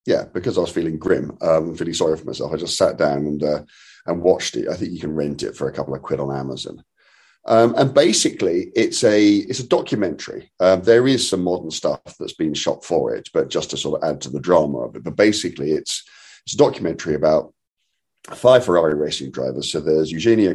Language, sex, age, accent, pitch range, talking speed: English, male, 40-59, British, 70-105 Hz, 230 wpm